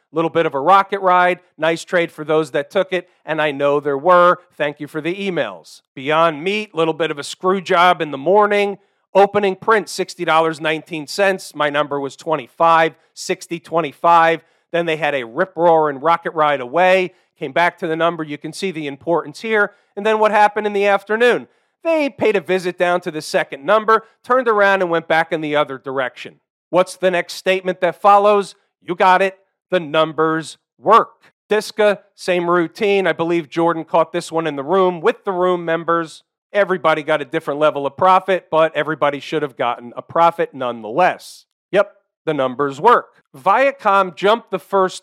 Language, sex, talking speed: English, male, 180 wpm